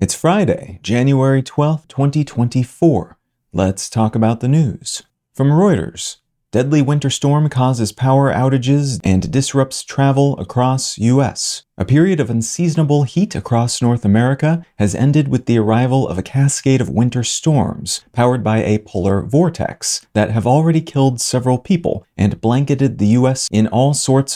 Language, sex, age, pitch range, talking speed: English, male, 40-59, 110-140 Hz, 150 wpm